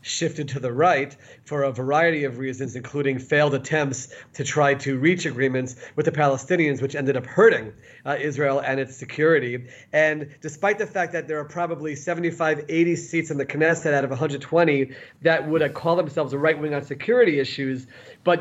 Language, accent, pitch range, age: English, American, 140-170 Hz, 30-49